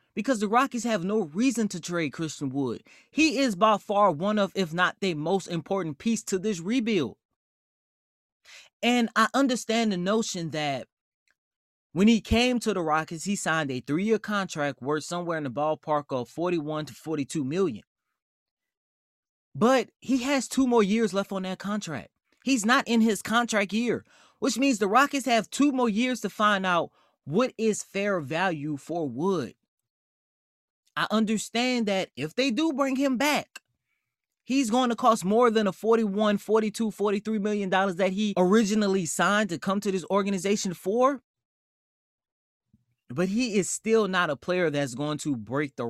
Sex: male